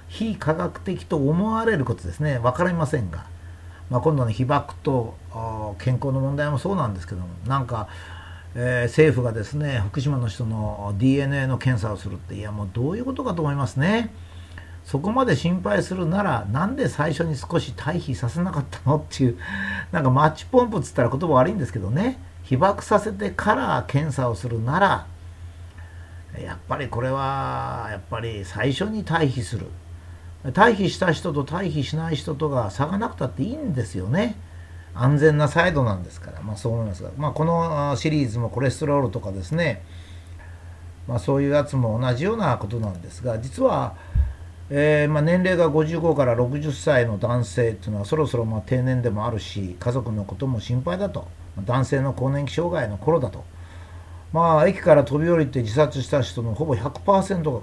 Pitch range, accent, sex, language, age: 100-150 Hz, native, male, Japanese, 50-69